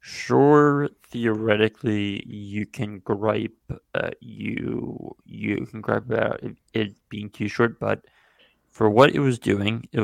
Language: English